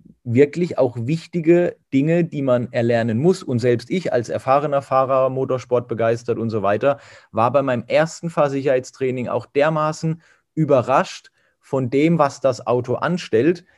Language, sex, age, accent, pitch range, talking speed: German, male, 30-49, German, 120-155 Hz, 145 wpm